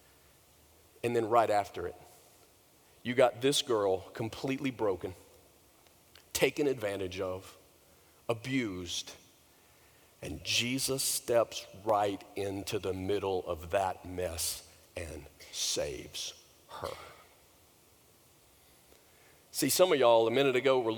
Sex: male